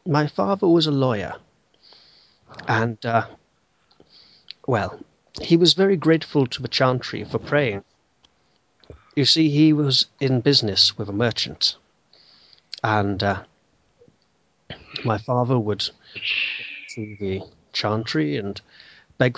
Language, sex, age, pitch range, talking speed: English, male, 40-59, 105-145 Hz, 115 wpm